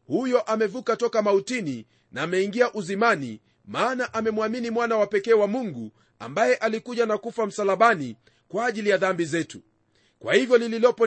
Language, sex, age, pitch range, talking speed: Swahili, male, 40-59, 195-240 Hz, 145 wpm